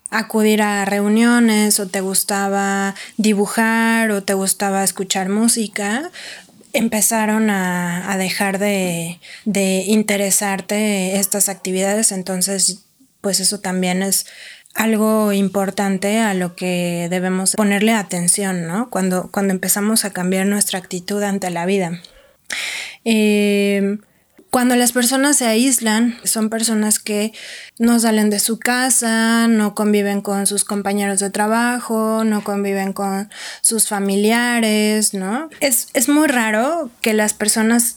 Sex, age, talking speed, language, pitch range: female, 20-39, 125 wpm, Spanish, 195-225 Hz